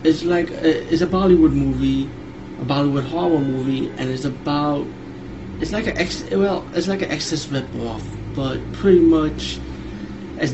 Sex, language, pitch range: male, English, 125-155 Hz